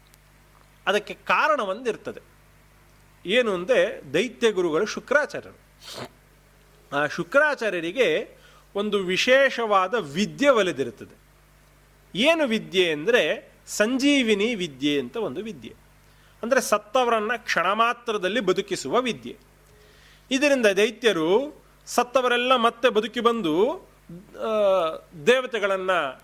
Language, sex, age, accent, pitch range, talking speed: Kannada, male, 30-49, native, 180-255 Hz, 75 wpm